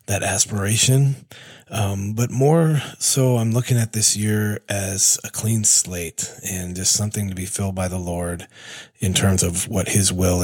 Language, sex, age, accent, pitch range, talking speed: English, male, 30-49, American, 95-110 Hz, 170 wpm